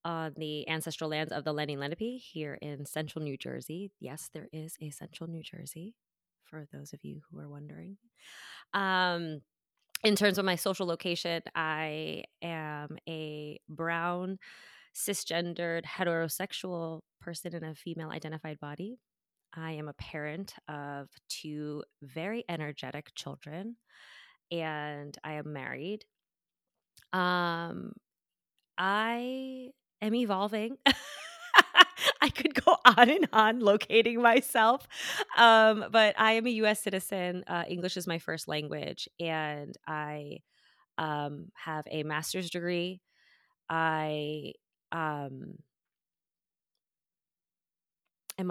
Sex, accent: female, American